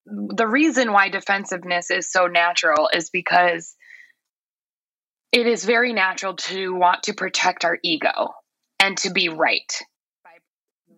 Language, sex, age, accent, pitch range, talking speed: English, female, 20-39, American, 185-255 Hz, 130 wpm